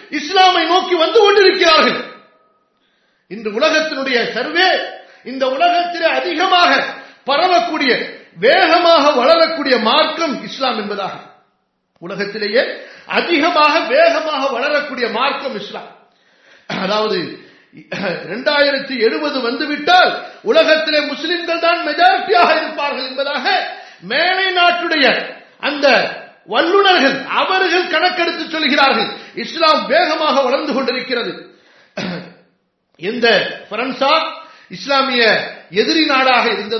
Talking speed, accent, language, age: 80 wpm, Indian, English, 50-69